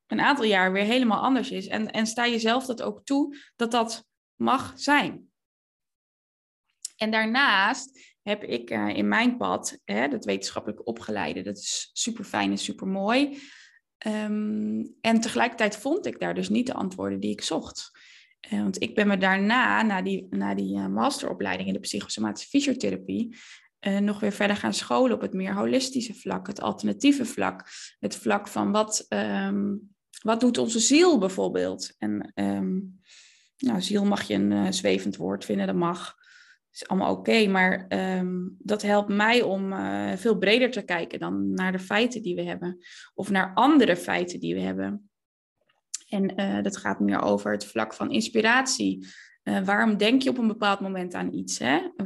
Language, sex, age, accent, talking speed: Dutch, female, 20-39, Dutch, 180 wpm